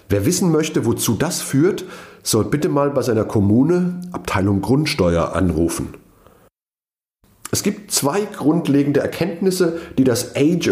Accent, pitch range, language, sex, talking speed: German, 100-140 Hz, German, male, 130 wpm